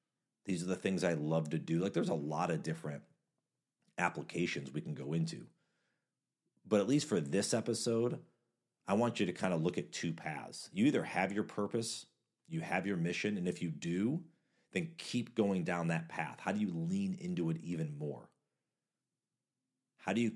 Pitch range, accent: 85-140 Hz, American